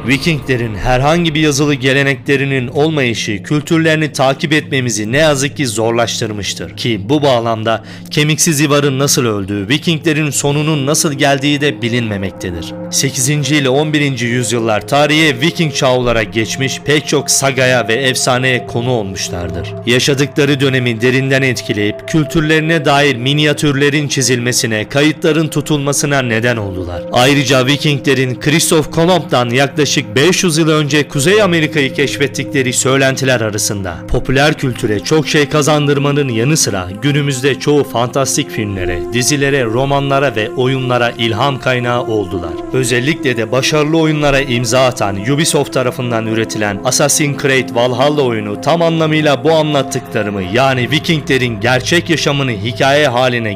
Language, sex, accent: Turkish, male, native